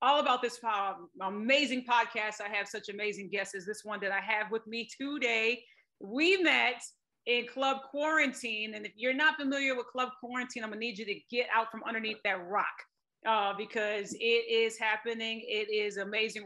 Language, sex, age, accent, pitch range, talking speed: English, female, 30-49, American, 210-245 Hz, 190 wpm